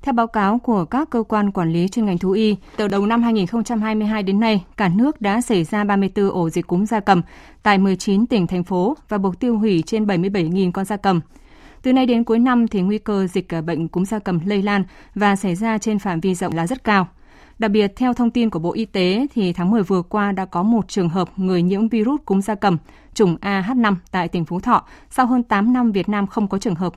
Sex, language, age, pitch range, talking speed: female, Vietnamese, 20-39, 185-225 Hz, 245 wpm